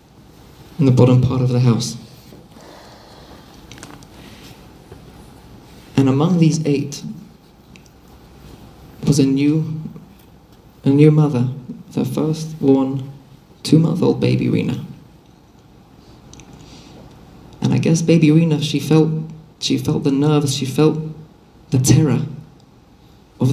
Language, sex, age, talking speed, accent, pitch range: English, male, 40-59, 100 wpm, British, 135-160 Hz